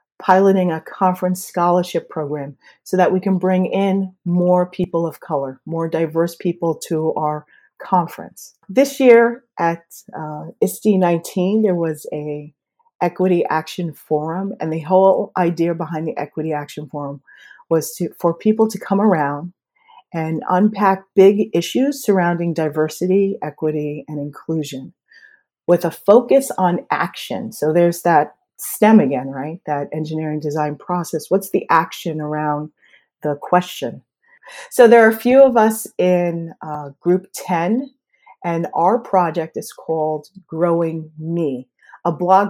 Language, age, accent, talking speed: English, 40-59, American, 140 wpm